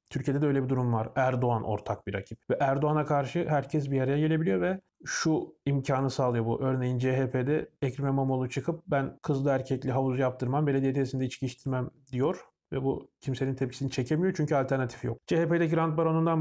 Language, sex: Turkish, male